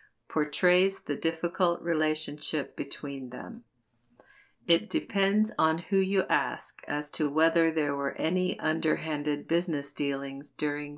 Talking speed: 120 wpm